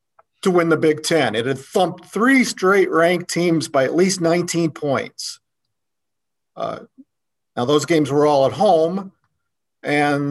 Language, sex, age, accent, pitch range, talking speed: English, male, 50-69, American, 145-175 Hz, 150 wpm